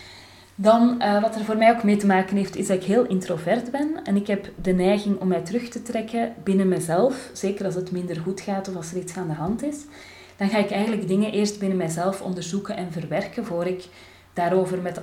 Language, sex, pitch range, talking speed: Dutch, female, 175-205 Hz, 230 wpm